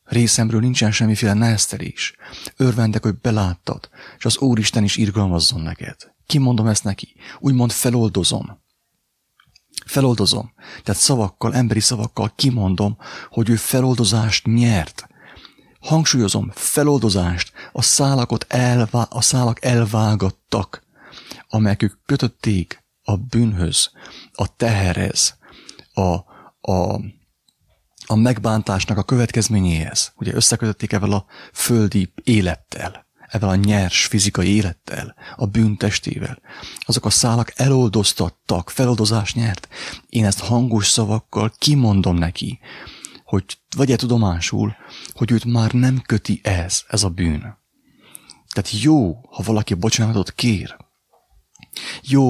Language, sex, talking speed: English, male, 105 wpm